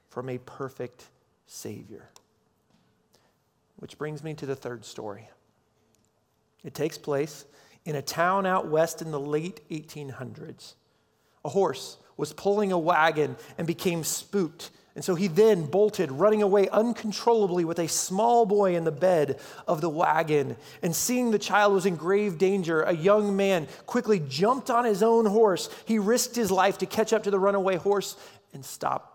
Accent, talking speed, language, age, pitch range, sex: American, 165 wpm, English, 40-59, 140-195 Hz, male